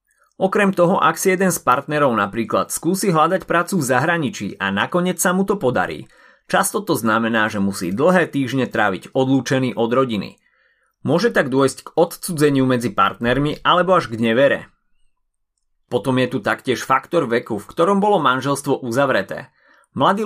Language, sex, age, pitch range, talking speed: Slovak, male, 30-49, 115-175 Hz, 155 wpm